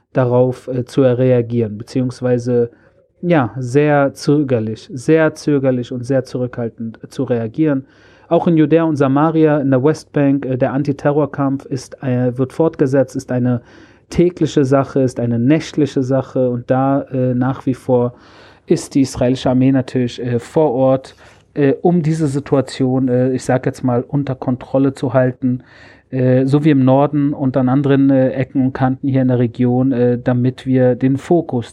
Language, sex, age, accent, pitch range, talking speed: German, male, 40-59, German, 125-150 Hz, 165 wpm